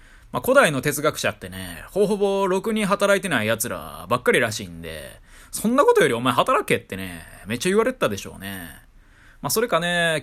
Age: 20-39